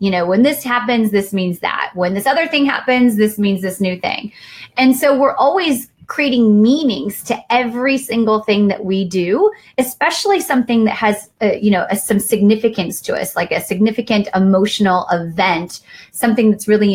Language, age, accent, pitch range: English, 30-49, American, 200-255 Hz